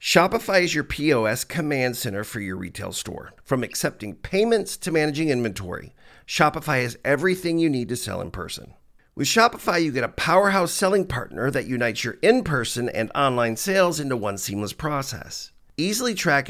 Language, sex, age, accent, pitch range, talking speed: English, male, 50-69, American, 110-150 Hz, 165 wpm